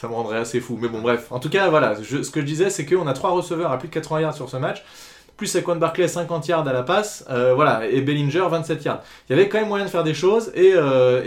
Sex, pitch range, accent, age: male, 125-170 Hz, French, 20-39